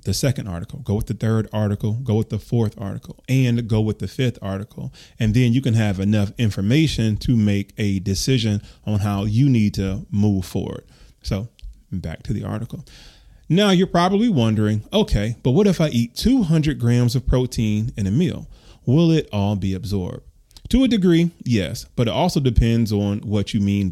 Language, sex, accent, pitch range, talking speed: English, male, American, 105-135 Hz, 190 wpm